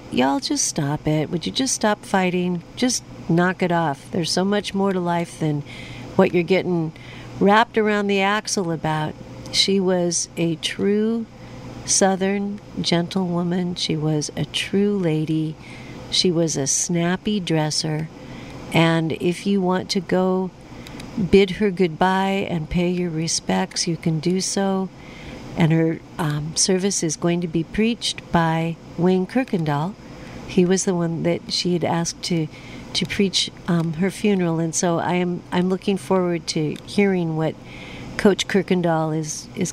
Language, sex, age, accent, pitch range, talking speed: English, female, 50-69, American, 160-190 Hz, 155 wpm